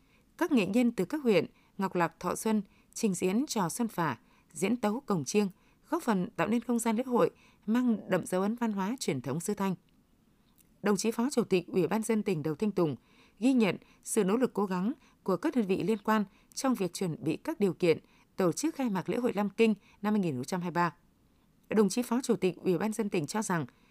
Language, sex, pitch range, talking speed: Vietnamese, female, 185-235 Hz, 225 wpm